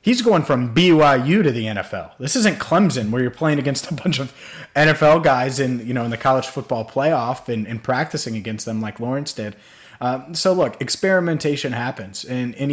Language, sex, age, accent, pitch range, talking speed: English, male, 30-49, American, 125-160 Hz, 200 wpm